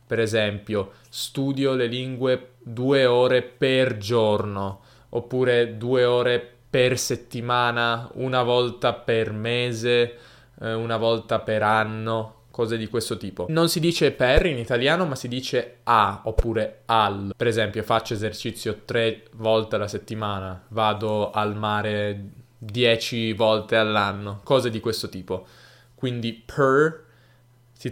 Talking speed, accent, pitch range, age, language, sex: 125 wpm, native, 110-125 Hz, 20-39, Italian, male